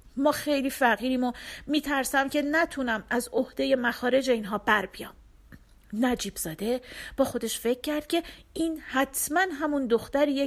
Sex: female